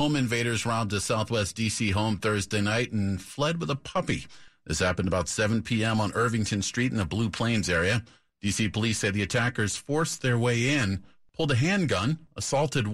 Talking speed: 185 wpm